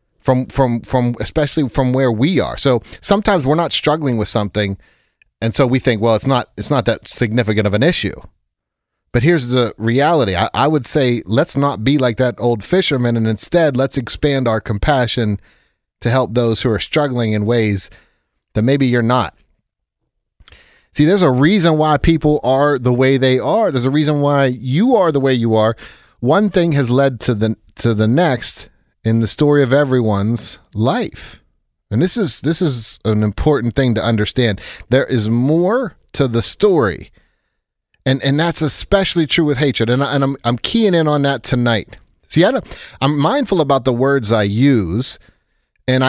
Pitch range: 115-145 Hz